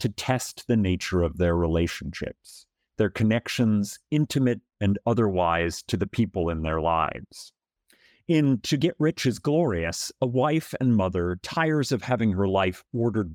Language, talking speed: English, 155 wpm